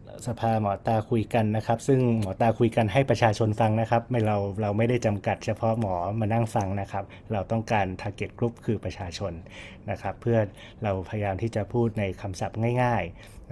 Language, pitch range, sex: Thai, 105-120 Hz, male